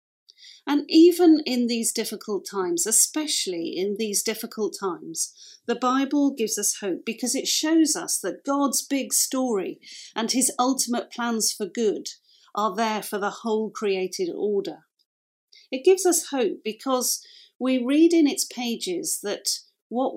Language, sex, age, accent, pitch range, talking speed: English, female, 40-59, British, 210-325 Hz, 145 wpm